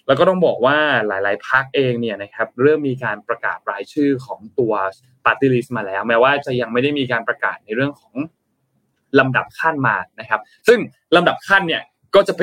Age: 20-39